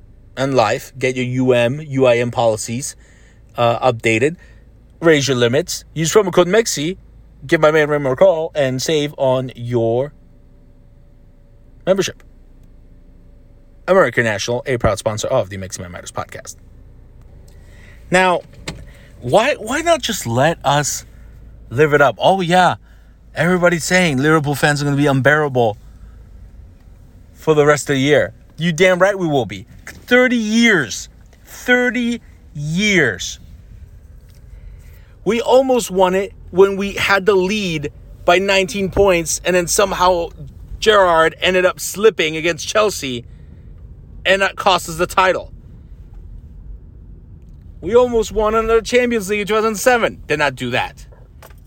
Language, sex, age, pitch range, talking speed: English, male, 30-49, 115-185 Hz, 130 wpm